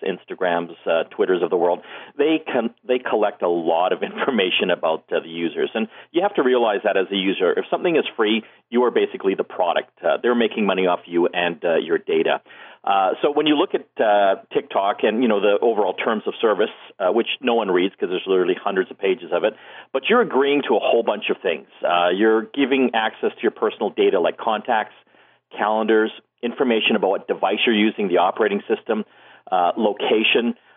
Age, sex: 40-59, male